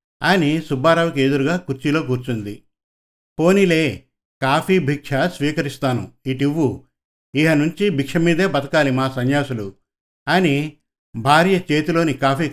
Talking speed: 100 wpm